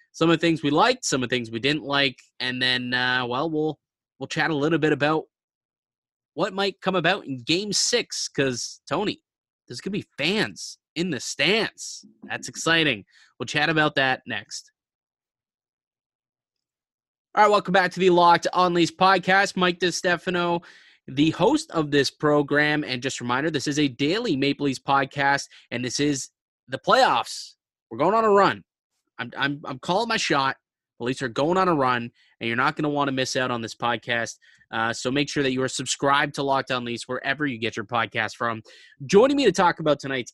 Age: 20-39